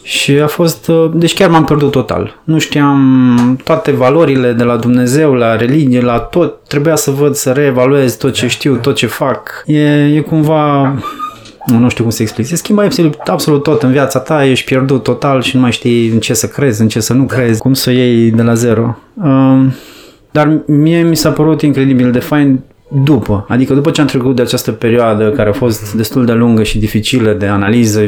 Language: Romanian